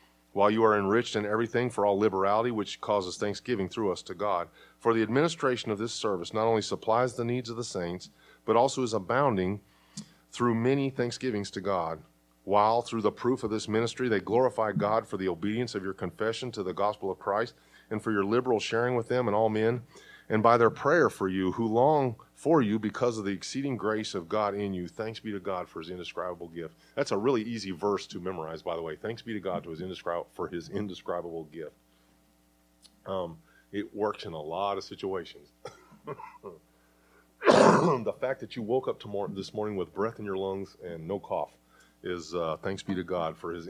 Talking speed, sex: 200 wpm, male